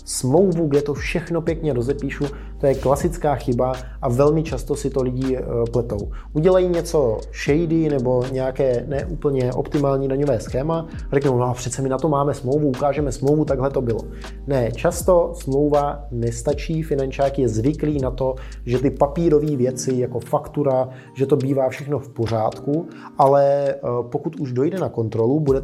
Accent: native